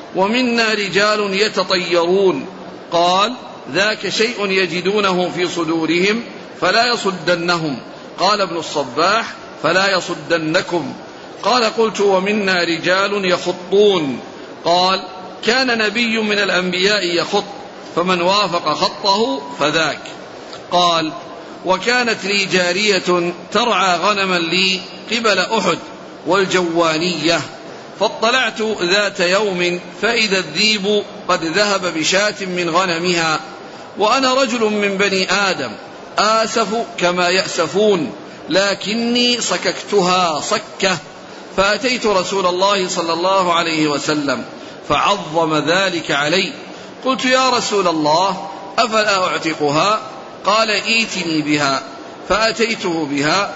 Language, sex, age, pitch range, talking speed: Arabic, male, 50-69, 175-210 Hz, 95 wpm